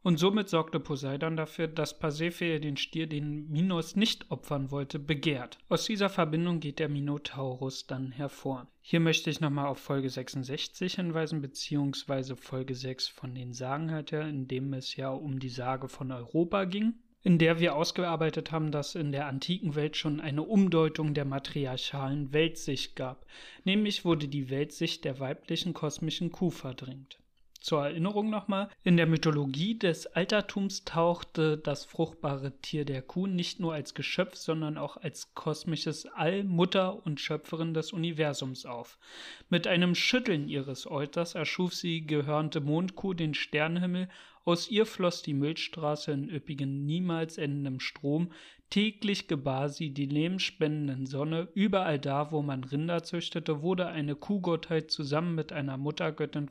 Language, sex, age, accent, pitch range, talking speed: German, male, 30-49, German, 140-170 Hz, 150 wpm